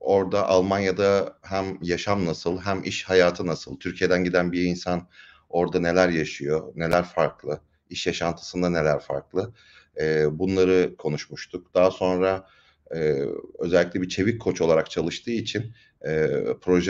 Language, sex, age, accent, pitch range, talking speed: Turkish, male, 40-59, native, 80-100 Hz, 120 wpm